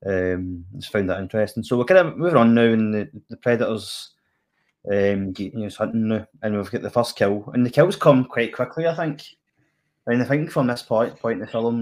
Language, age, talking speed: English, 20-39, 225 wpm